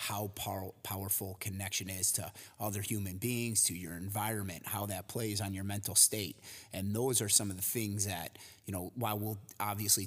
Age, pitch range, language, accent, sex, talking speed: 30-49, 100-115 Hz, English, American, male, 185 wpm